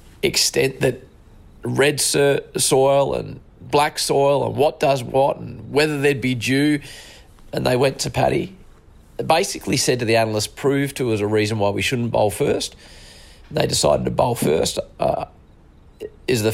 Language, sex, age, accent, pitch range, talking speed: English, male, 30-49, Australian, 100-120 Hz, 160 wpm